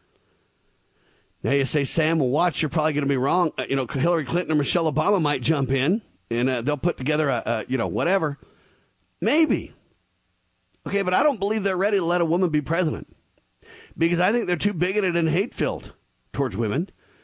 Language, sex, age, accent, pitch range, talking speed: English, male, 50-69, American, 130-180 Hz, 200 wpm